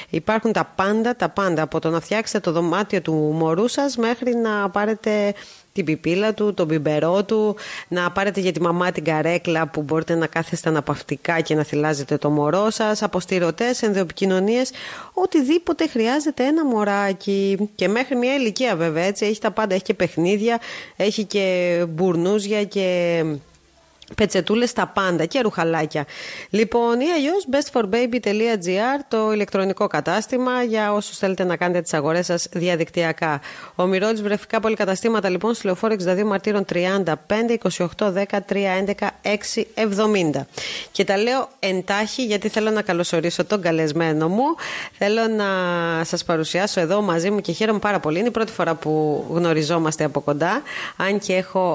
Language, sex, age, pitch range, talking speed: Greek, female, 30-49, 170-220 Hz, 155 wpm